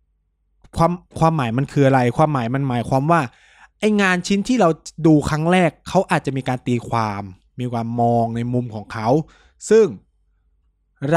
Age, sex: 20-39, male